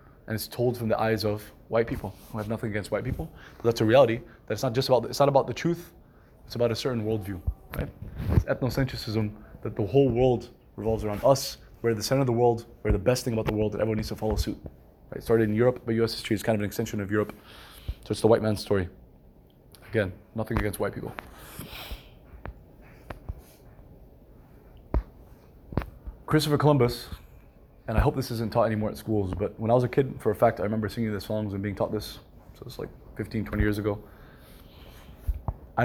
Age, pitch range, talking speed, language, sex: 20-39, 105-120 Hz, 210 wpm, English, male